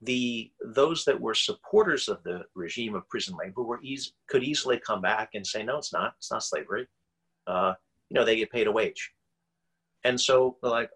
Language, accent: English, American